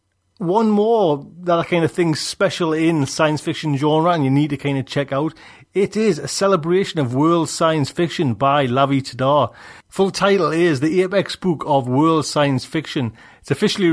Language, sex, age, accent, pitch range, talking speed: English, male, 30-49, British, 135-175 Hz, 180 wpm